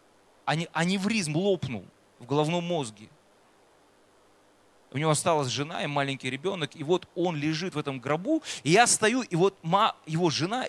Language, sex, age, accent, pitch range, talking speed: Russian, male, 20-39, native, 160-245 Hz, 150 wpm